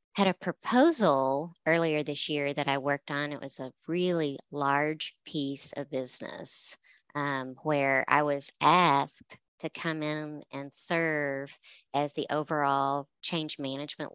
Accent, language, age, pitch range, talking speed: American, English, 40-59, 140-170 Hz, 140 wpm